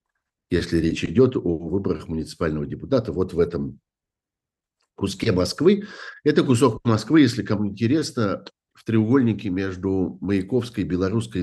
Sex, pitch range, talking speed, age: male, 85-115 Hz, 120 wpm, 50-69